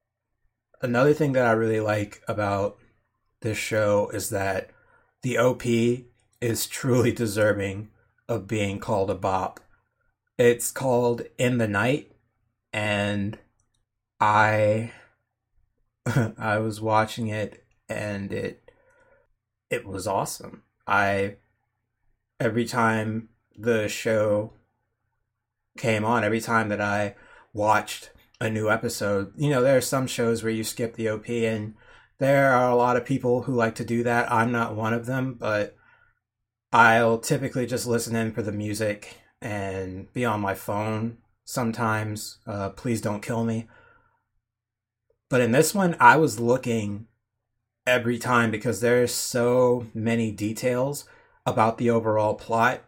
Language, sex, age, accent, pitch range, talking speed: English, male, 30-49, American, 105-120 Hz, 135 wpm